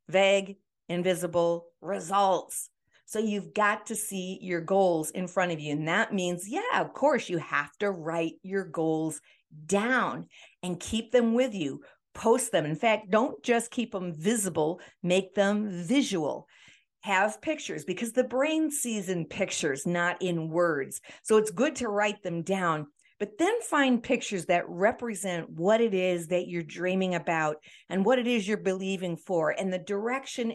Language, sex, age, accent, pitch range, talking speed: English, female, 50-69, American, 175-220 Hz, 165 wpm